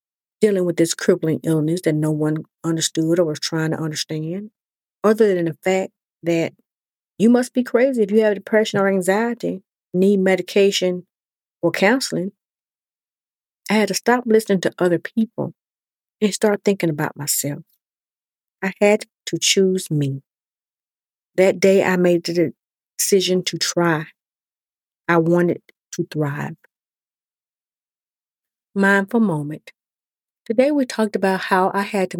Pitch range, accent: 160-205 Hz, American